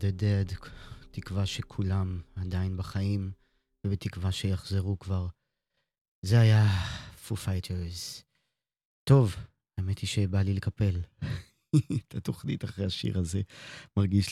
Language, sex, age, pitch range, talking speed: Hebrew, male, 20-39, 90-110 Hz, 105 wpm